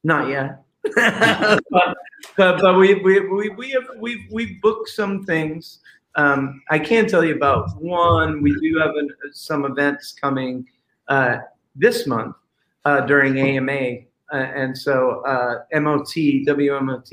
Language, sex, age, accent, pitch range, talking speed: English, male, 40-59, American, 130-150 Hz, 140 wpm